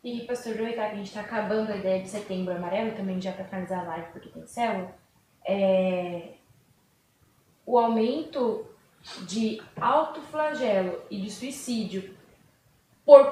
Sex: female